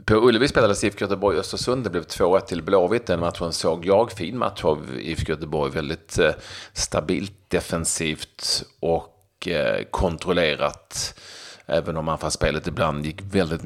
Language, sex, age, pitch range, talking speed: Swedish, male, 30-49, 85-100 Hz, 155 wpm